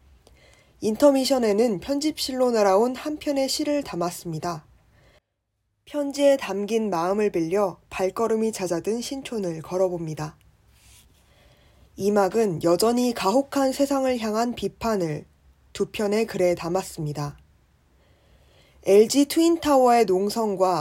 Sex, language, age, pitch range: female, Korean, 20-39, 170-235 Hz